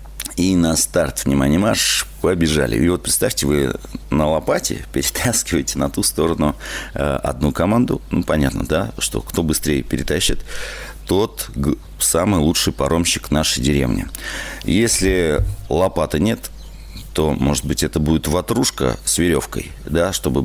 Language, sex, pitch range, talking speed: Russian, male, 70-85 Hz, 130 wpm